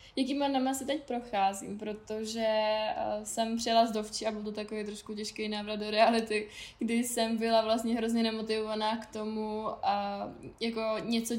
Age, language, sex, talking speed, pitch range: 10-29, Czech, female, 165 wpm, 215-235 Hz